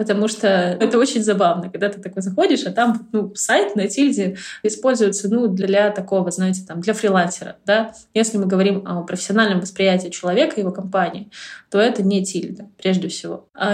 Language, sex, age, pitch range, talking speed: Russian, female, 20-39, 180-210 Hz, 180 wpm